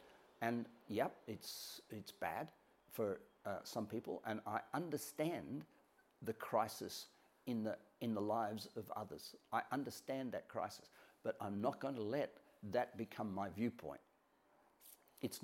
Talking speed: 135 wpm